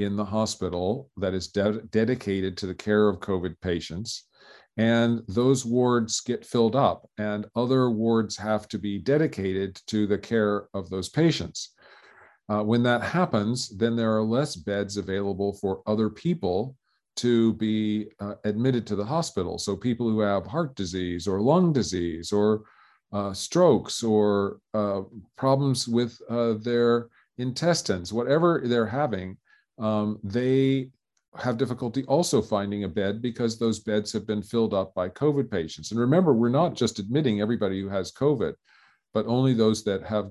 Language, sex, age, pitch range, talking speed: English, male, 40-59, 100-120 Hz, 160 wpm